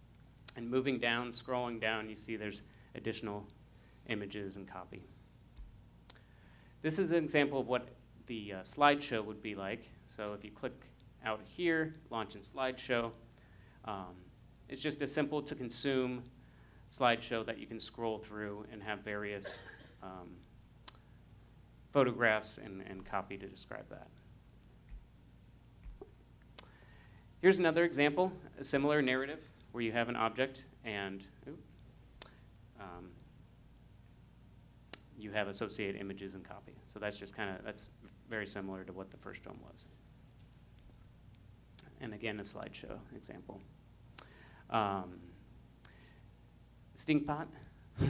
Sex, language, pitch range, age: male, English, 105-130 Hz, 30-49